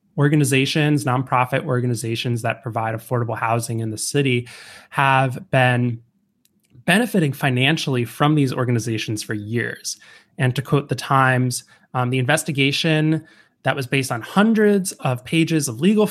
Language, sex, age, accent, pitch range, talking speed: English, male, 20-39, American, 120-155 Hz, 135 wpm